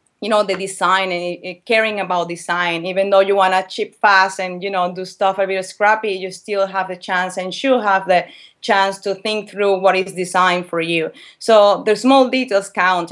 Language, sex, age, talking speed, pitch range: English, female, 30-49, 210 wpm, 175-195 Hz